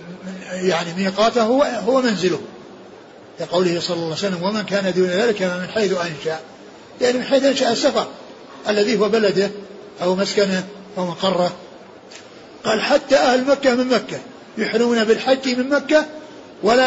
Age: 50-69